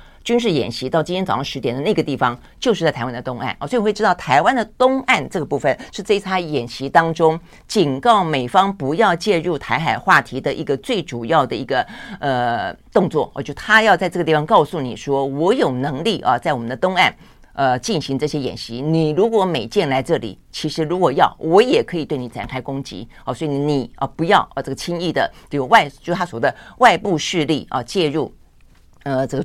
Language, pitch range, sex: Chinese, 130-180 Hz, female